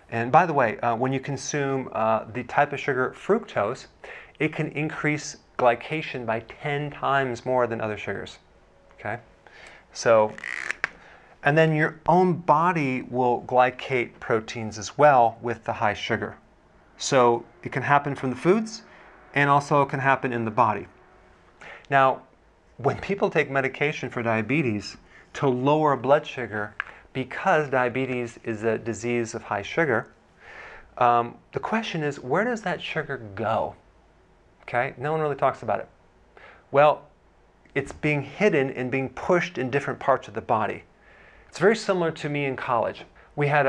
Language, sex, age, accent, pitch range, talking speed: English, male, 40-59, American, 120-150 Hz, 155 wpm